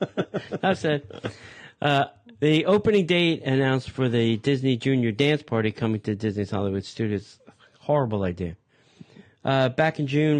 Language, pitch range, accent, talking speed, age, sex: English, 110-150 Hz, American, 140 wpm, 50-69, male